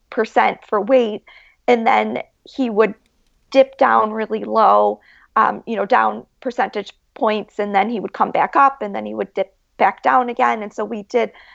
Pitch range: 205-245 Hz